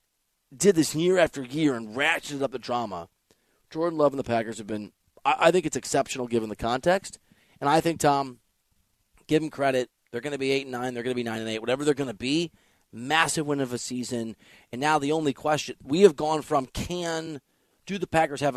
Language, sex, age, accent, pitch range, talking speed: English, male, 30-49, American, 115-150 Hz, 215 wpm